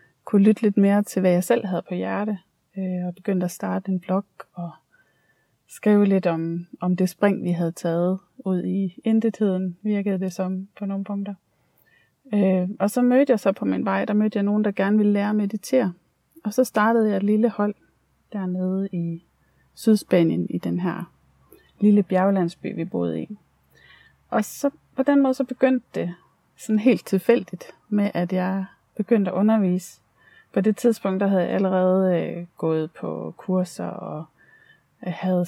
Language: Danish